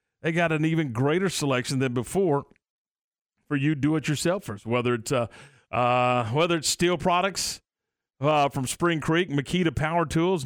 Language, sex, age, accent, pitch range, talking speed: English, male, 50-69, American, 130-175 Hz, 160 wpm